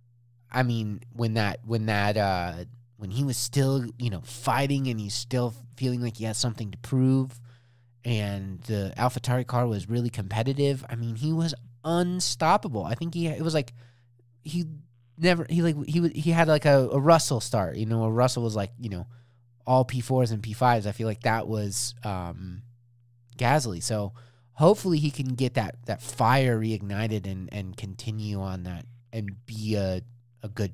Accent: American